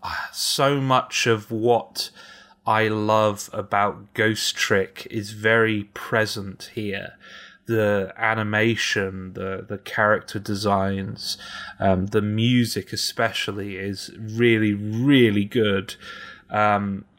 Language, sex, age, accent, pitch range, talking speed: English, male, 30-49, British, 100-110 Hz, 100 wpm